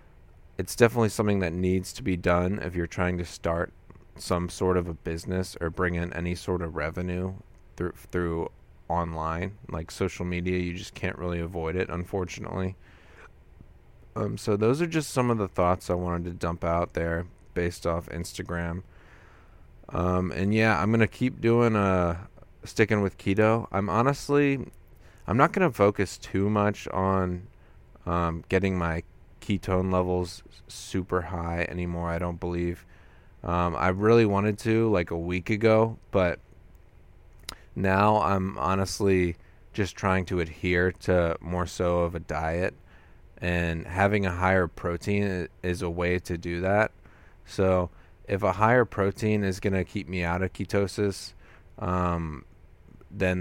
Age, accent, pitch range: 30-49, American, 85-100 Hz